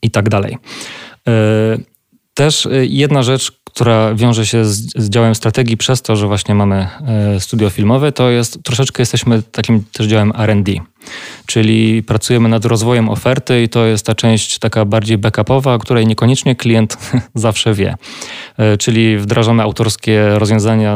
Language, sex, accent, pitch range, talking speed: Polish, male, native, 105-120 Hz, 145 wpm